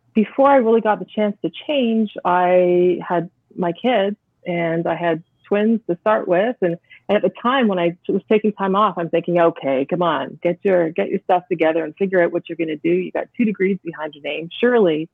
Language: English